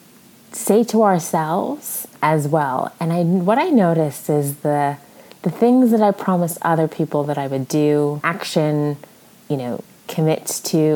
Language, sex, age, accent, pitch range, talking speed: English, female, 20-39, American, 145-190 Hz, 155 wpm